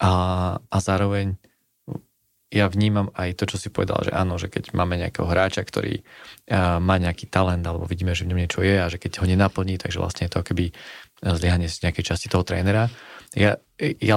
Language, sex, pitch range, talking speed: Slovak, male, 90-95 Hz, 195 wpm